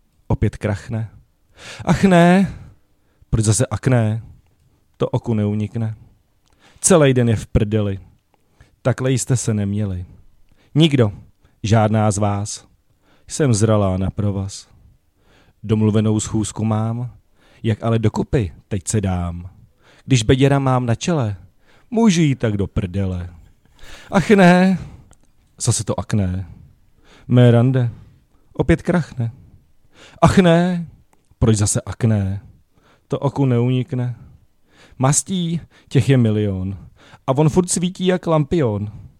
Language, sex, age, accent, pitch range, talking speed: Czech, male, 40-59, native, 100-130 Hz, 110 wpm